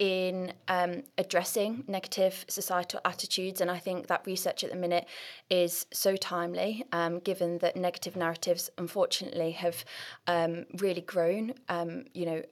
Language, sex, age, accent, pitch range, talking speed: English, female, 20-39, British, 170-195 Hz, 145 wpm